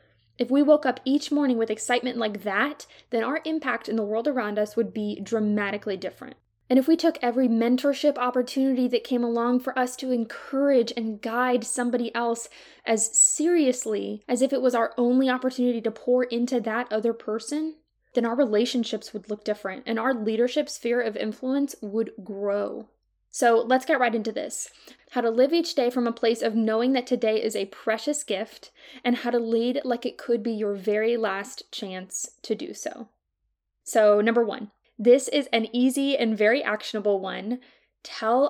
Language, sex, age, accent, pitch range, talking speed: English, female, 10-29, American, 220-260 Hz, 185 wpm